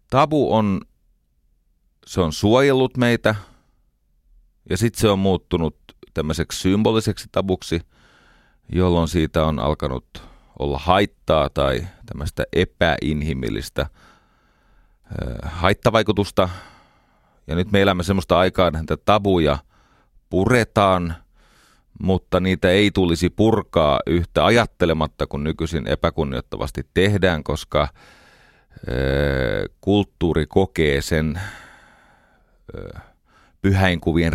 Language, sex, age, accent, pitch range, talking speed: Finnish, male, 30-49, native, 75-95 Hz, 85 wpm